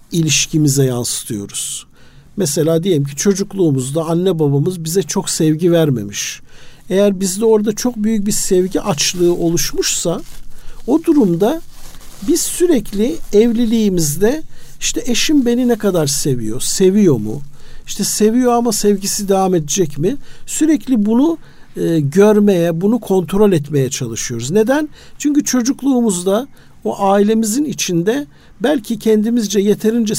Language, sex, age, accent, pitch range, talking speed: Turkish, male, 50-69, native, 160-230 Hz, 115 wpm